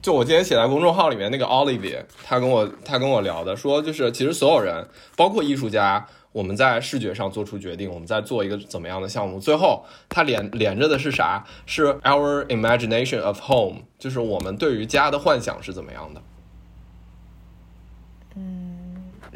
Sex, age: male, 20-39